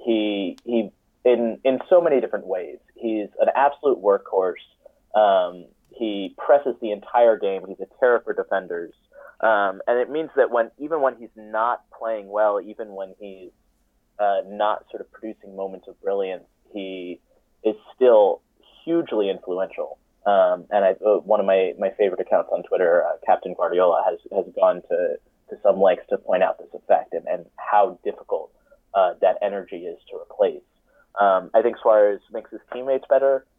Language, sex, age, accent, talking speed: English, male, 30-49, American, 170 wpm